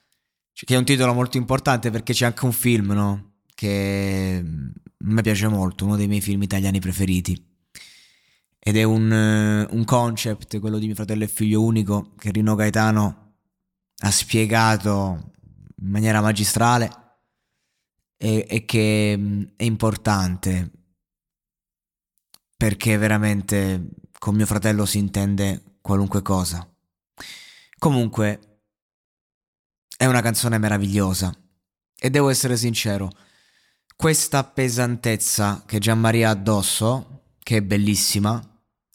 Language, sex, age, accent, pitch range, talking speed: Italian, male, 20-39, native, 100-115 Hz, 120 wpm